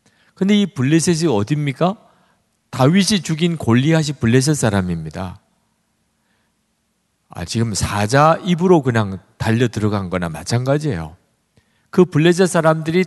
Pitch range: 105-155 Hz